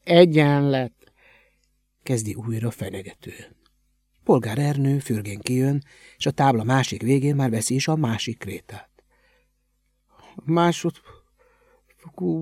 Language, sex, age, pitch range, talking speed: Hungarian, male, 60-79, 100-140 Hz, 95 wpm